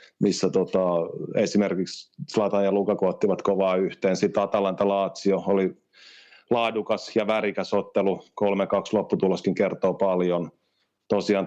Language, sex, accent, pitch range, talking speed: Finnish, male, native, 95-105 Hz, 105 wpm